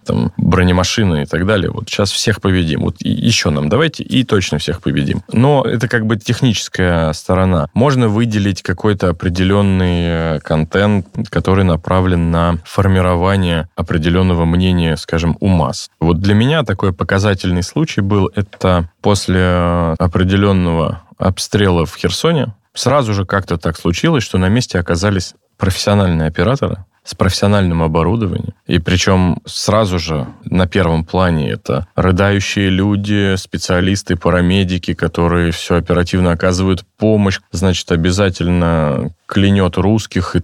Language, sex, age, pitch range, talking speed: Russian, male, 20-39, 85-105 Hz, 125 wpm